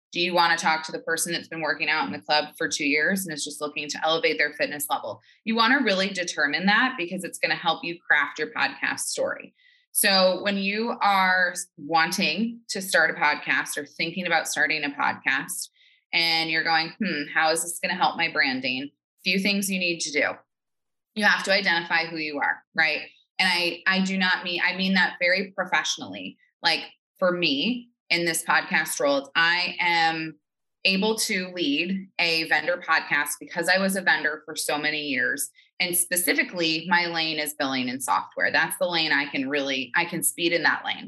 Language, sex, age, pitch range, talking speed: English, female, 20-39, 160-195 Hz, 205 wpm